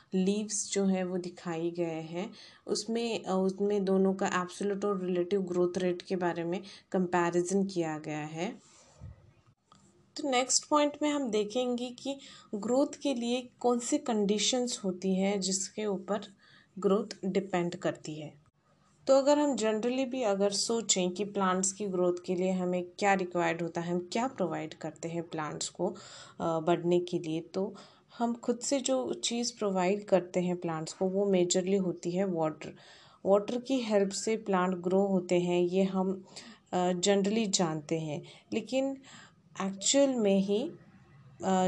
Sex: female